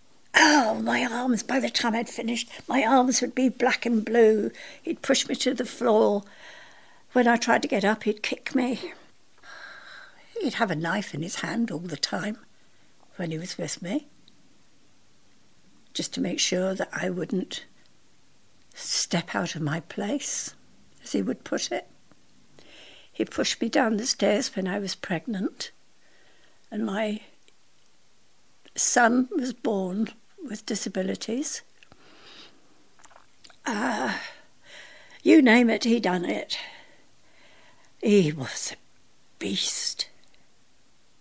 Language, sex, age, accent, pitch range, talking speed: English, female, 60-79, British, 195-250 Hz, 130 wpm